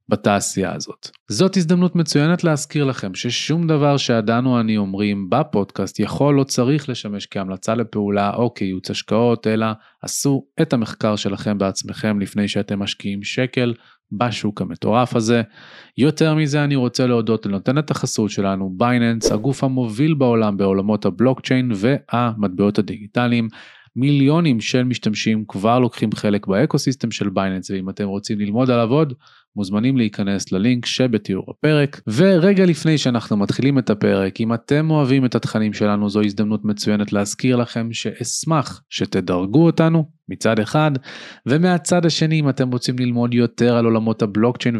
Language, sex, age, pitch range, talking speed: Hebrew, male, 20-39, 105-135 Hz, 140 wpm